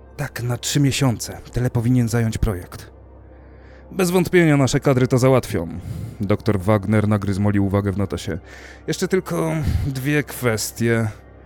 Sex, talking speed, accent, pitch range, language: male, 125 wpm, native, 95-130 Hz, Polish